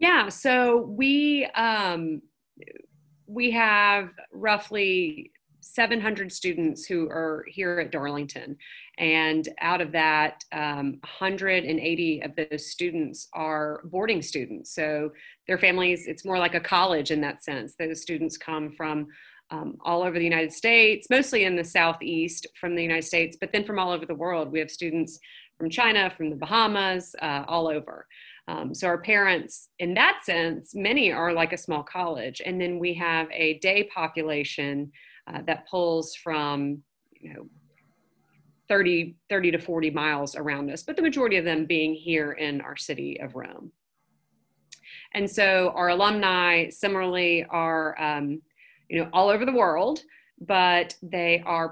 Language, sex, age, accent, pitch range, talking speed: English, female, 30-49, American, 155-190 Hz, 155 wpm